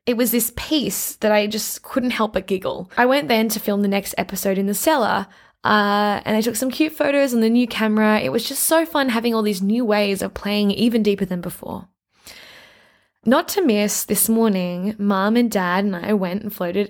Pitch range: 195-270 Hz